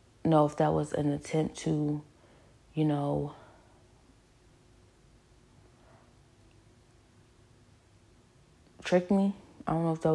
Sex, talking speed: female, 95 wpm